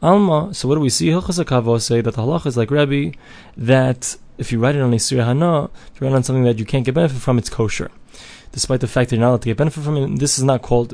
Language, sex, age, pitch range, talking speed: English, male, 20-39, 120-135 Hz, 280 wpm